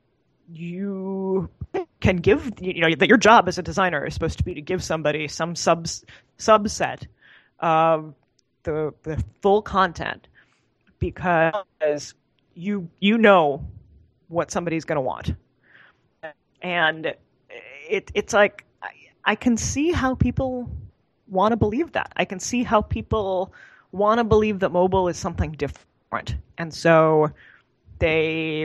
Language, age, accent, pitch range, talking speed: English, 30-49, American, 160-210 Hz, 135 wpm